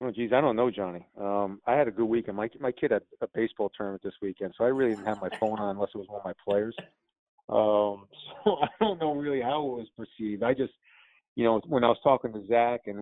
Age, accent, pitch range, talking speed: 40-59, American, 105-120 Hz, 265 wpm